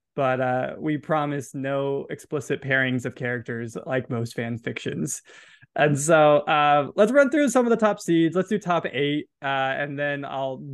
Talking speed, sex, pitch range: 180 wpm, male, 135-170 Hz